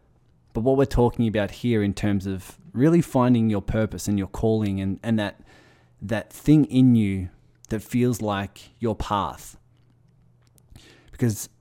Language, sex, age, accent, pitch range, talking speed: English, male, 20-39, Australian, 100-125 Hz, 150 wpm